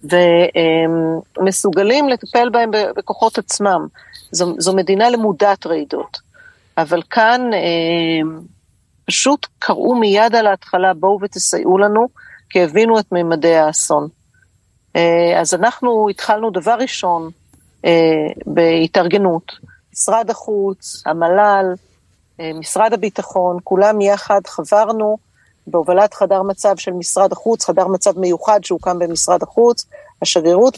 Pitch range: 170-215 Hz